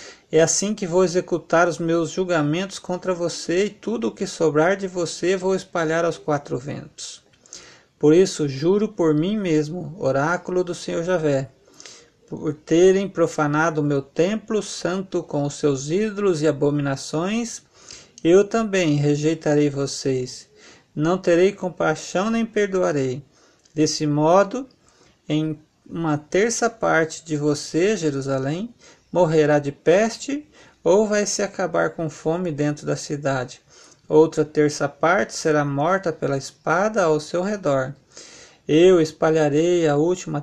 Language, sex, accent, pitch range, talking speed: Portuguese, male, Brazilian, 150-185 Hz, 130 wpm